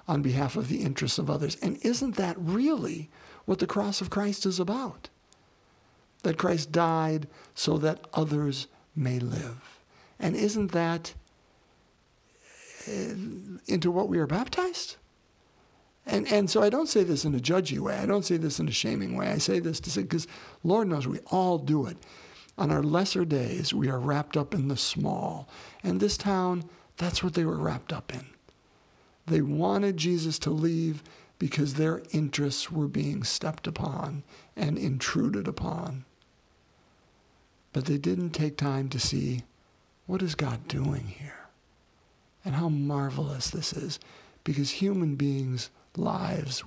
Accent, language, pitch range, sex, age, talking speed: American, English, 145-185 Hz, male, 60-79, 155 wpm